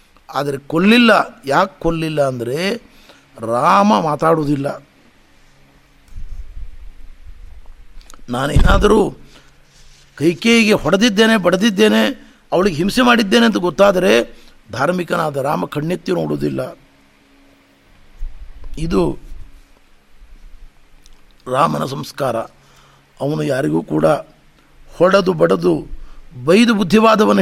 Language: Kannada